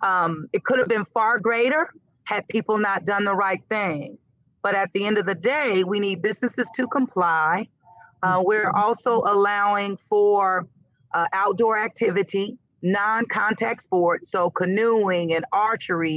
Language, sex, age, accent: English, female, 40-59, American